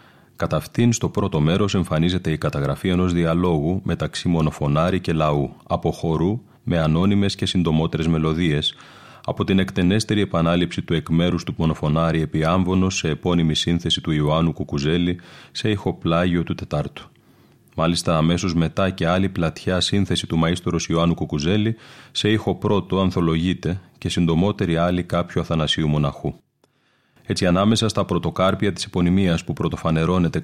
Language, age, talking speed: Greek, 30-49, 130 wpm